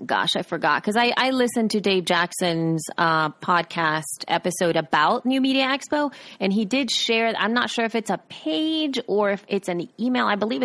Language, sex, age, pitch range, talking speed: English, female, 30-49, 165-210 Hz, 195 wpm